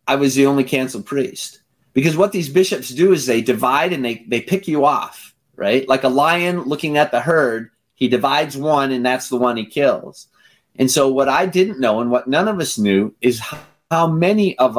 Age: 30-49